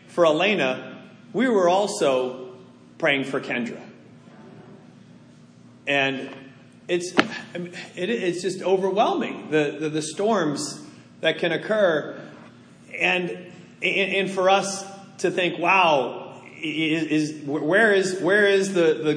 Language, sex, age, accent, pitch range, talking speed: English, male, 30-49, American, 150-195 Hz, 105 wpm